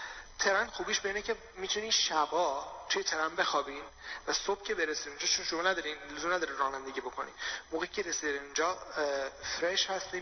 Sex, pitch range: male, 145-175 Hz